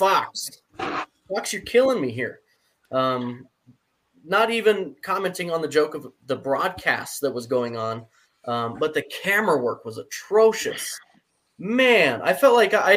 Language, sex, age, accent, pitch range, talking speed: English, male, 20-39, American, 155-250 Hz, 150 wpm